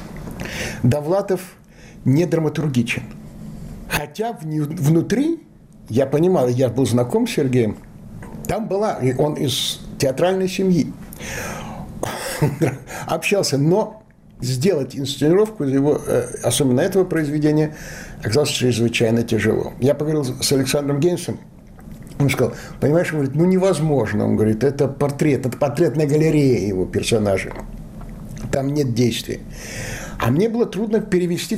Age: 60-79